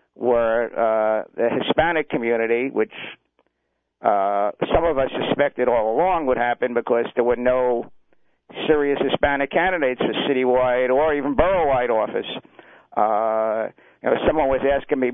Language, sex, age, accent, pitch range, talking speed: English, male, 50-69, American, 120-140 Hz, 145 wpm